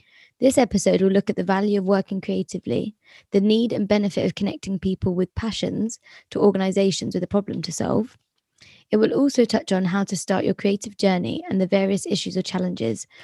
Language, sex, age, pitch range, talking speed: English, female, 20-39, 190-210 Hz, 195 wpm